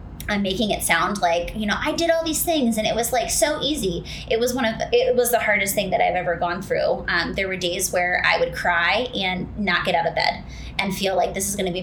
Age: 20-39